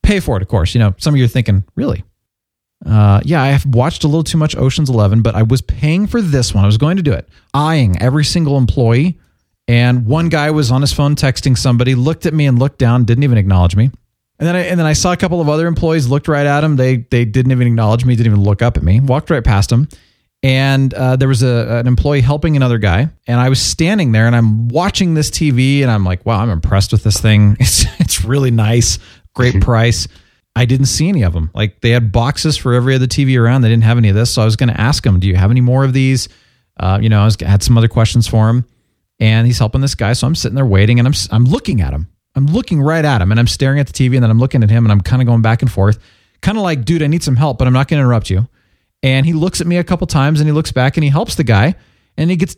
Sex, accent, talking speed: male, American, 285 wpm